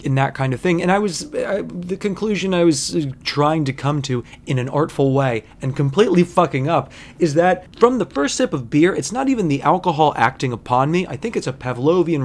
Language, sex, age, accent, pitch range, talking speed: English, male, 30-49, American, 130-175 Hz, 225 wpm